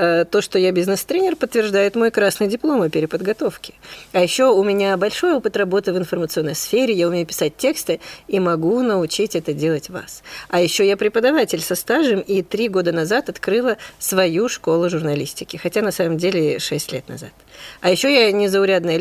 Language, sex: Russian, female